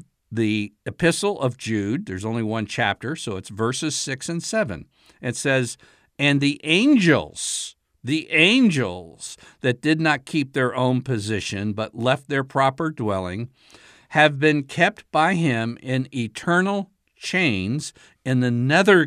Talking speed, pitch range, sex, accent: 140 wpm, 115-160 Hz, male, American